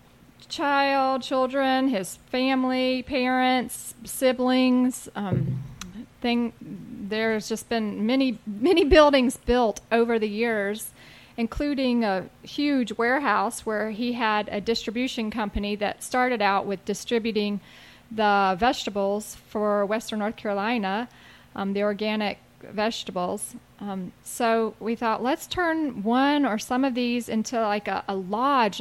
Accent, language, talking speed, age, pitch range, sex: American, English, 125 wpm, 30-49, 215-265 Hz, female